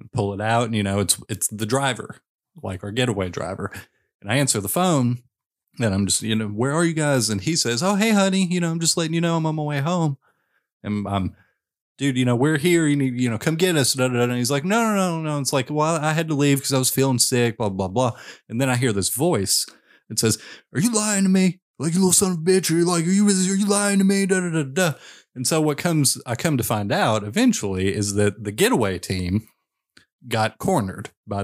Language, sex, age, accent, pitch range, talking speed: English, male, 30-49, American, 100-150 Hz, 250 wpm